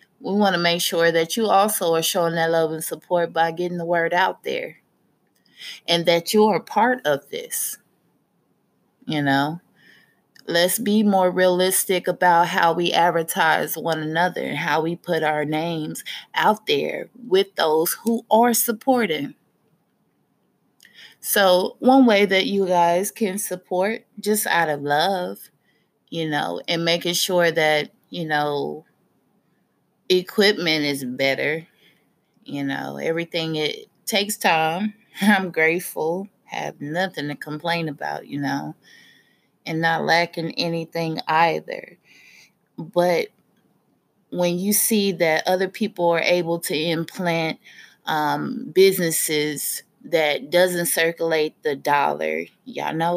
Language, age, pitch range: English, 20-39, 160-195 Hz